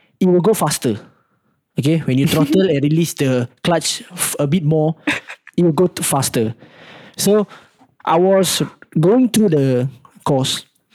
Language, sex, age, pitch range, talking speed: English, male, 20-39, 145-190 Hz, 150 wpm